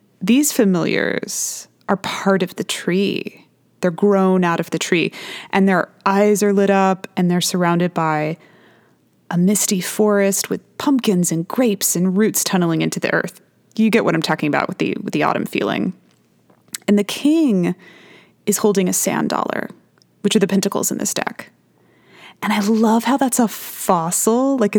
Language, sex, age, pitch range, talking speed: English, female, 20-39, 180-220 Hz, 170 wpm